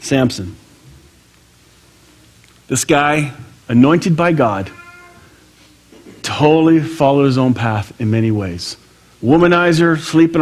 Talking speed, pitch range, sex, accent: 90 wpm, 95-145 Hz, male, American